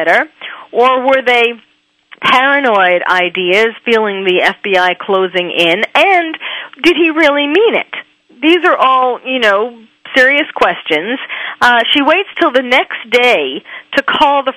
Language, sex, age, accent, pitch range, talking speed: English, female, 40-59, American, 215-275 Hz, 135 wpm